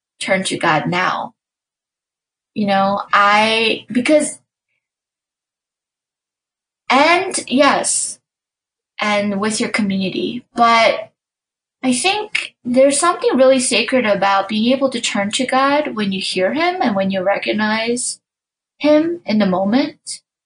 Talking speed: 115 wpm